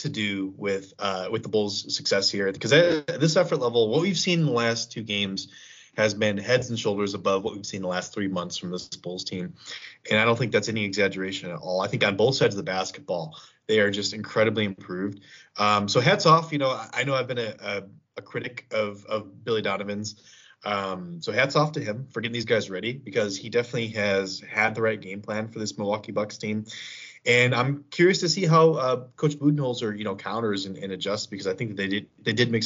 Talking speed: 235 wpm